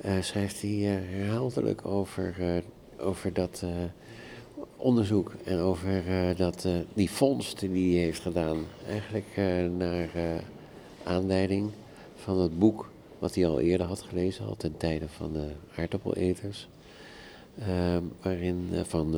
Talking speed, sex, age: 145 wpm, male, 50-69